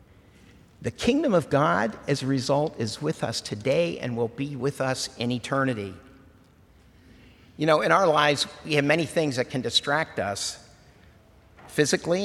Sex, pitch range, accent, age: male, 110-150 Hz, American, 50-69